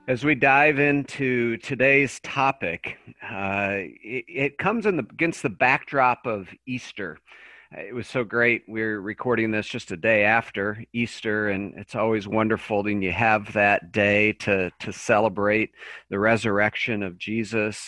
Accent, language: American, English